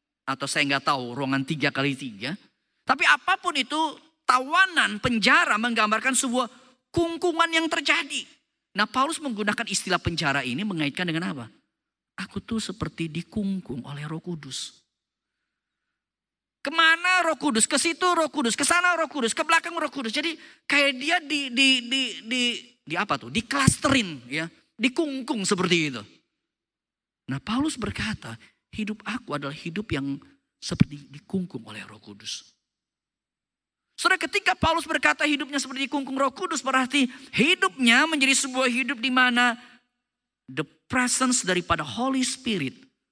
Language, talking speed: Indonesian, 135 wpm